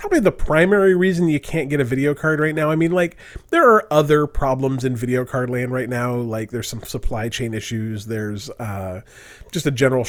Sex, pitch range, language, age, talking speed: male, 120-175 Hz, English, 30-49, 215 wpm